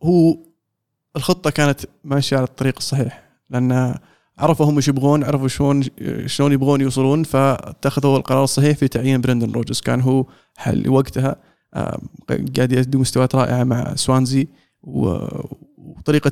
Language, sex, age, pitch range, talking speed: Arabic, male, 20-39, 130-145 Hz, 130 wpm